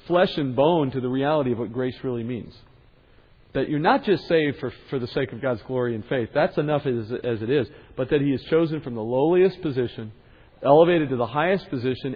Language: English